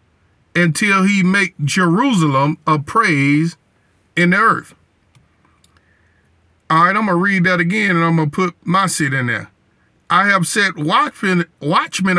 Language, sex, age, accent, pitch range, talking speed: English, male, 50-69, American, 145-195 Hz, 155 wpm